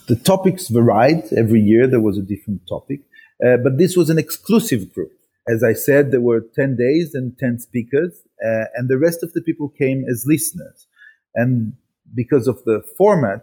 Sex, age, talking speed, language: male, 40-59, 190 wpm, English